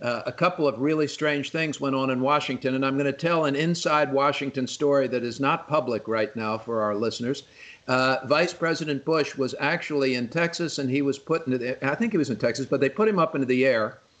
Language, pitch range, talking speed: English, 135-165 Hz, 240 wpm